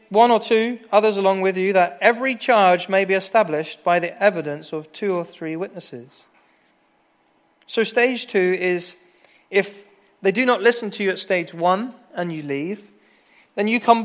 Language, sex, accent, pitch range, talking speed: English, male, British, 170-225 Hz, 175 wpm